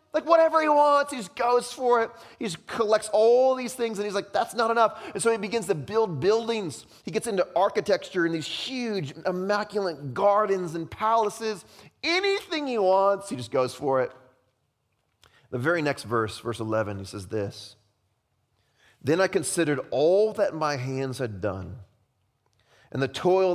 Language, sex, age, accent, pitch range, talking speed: English, male, 30-49, American, 110-170 Hz, 175 wpm